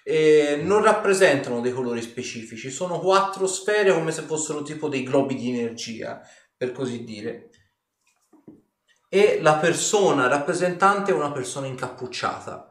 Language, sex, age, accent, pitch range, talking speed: Italian, male, 30-49, native, 125-185 Hz, 130 wpm